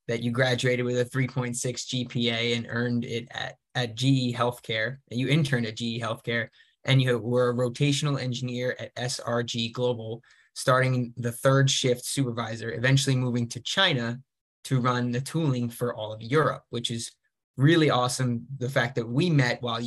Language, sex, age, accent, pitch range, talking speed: English, male, 20-39, American, 120-130 Hz, 170 wpm